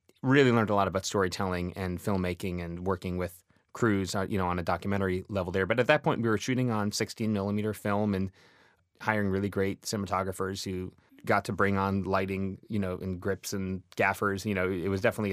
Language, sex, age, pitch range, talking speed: English, male, 30-49, 90-100 Hz, 205 wpm